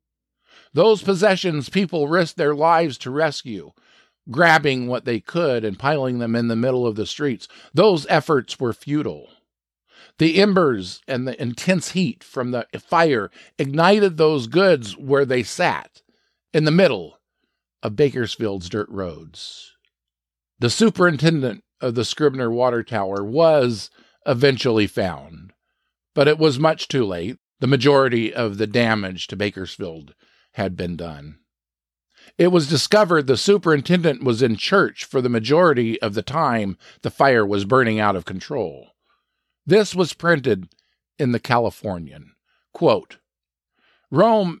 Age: 50-69